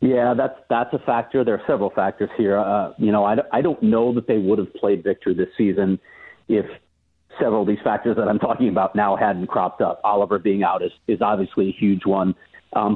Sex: male